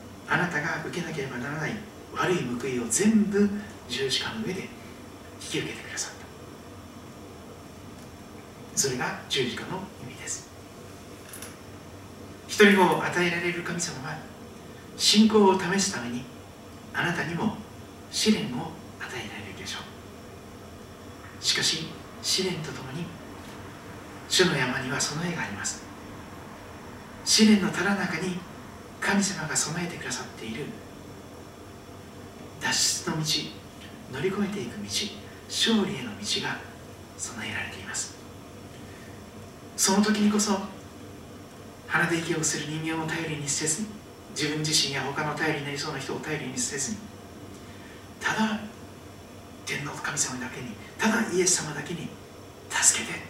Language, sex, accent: Japanese, male, native